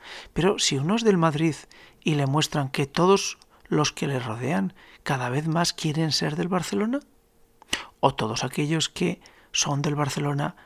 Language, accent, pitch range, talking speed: Spanish, Spanish, 140-190 Hz, 165 wpm